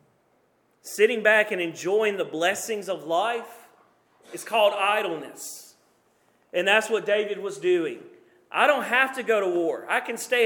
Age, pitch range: 40-59, 190-250 Hz